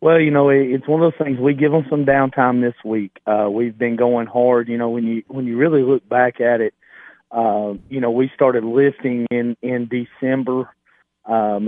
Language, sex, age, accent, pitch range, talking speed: English, male, 40-59, American, 120-130 Hz, 210 wpm